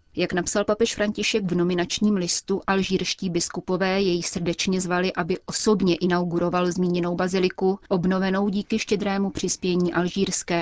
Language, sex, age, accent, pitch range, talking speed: Czech, female, 30-49, native, 170-190 Hz, 125 wpm